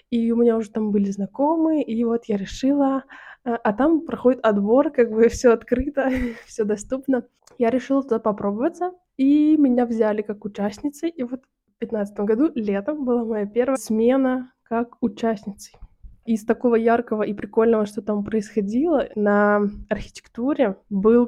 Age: 20-39